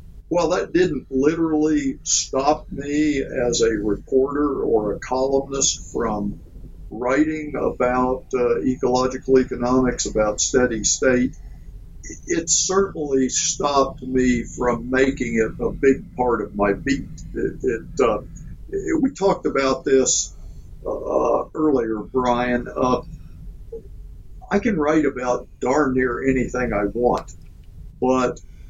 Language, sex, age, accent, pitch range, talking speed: English, male, 60-79, American, 115-145 Hz, 110 wpm